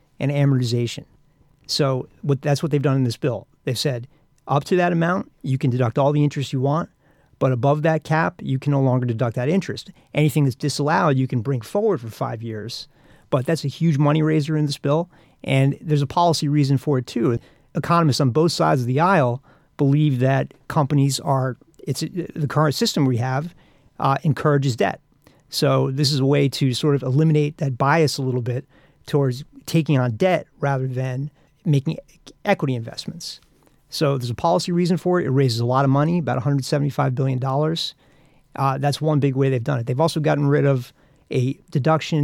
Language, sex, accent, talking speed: English, male, American, 195 wpm